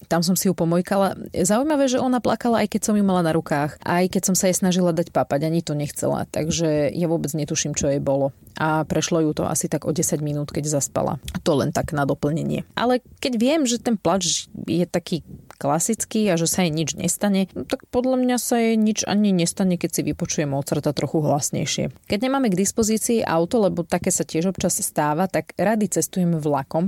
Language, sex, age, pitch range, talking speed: Slovak, female, 30-49, 155-195 Hz, 215 wpm